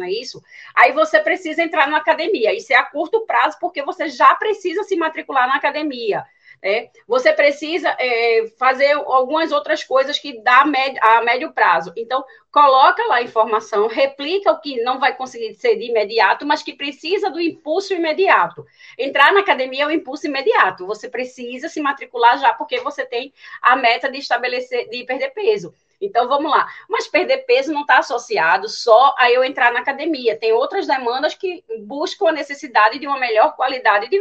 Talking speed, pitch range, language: 180 wpm, 250-360 Hz, Portuguese